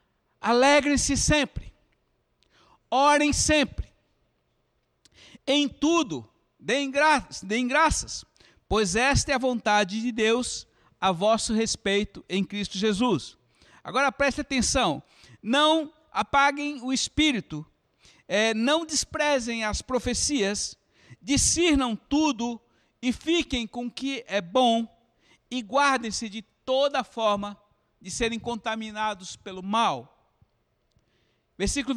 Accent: Brazilian